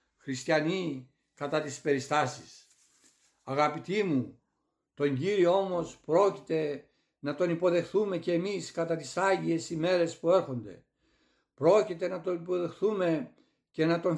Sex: male